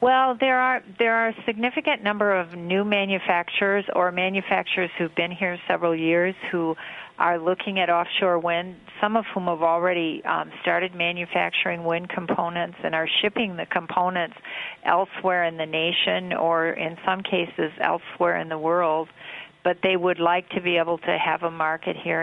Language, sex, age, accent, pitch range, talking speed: English, female, 50-69, American, 170-195 Hz, 170 wpm